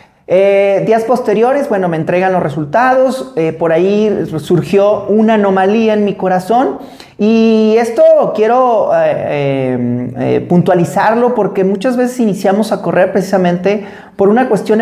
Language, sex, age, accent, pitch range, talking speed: Spanish, male, 40-59, Mexican, 170-215 Hz, 135 wpm